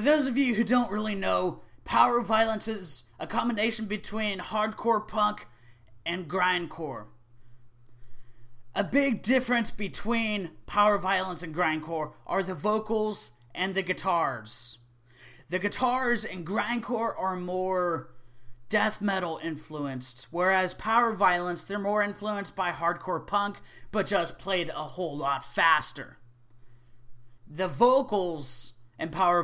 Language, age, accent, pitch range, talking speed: English, 20-39, American, 125-210 Hz, 120 wpm